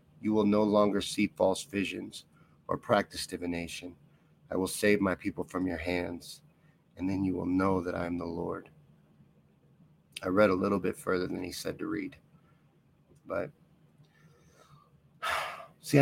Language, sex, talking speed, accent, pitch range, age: English, male, 155 wpm, American, 100-150 Hz, 50-69